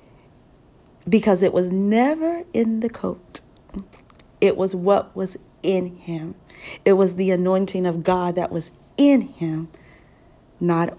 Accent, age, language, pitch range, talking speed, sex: American, 40-59, English, 175-195 Hz, 130 wpm, female